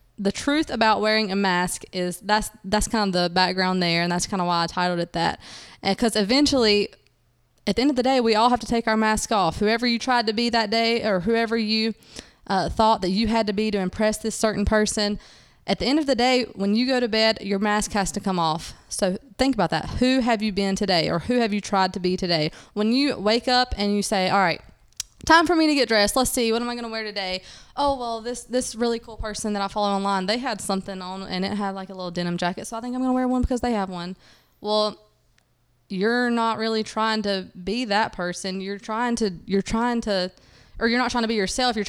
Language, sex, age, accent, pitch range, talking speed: English, female, 20-39, American, 195-235 Hz, 255 wpm